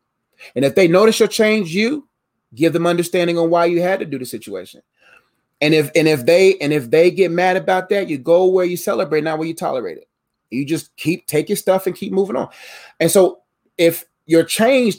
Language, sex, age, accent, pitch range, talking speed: English, male, 30-49, American, 155-210 Hz, 220 wpm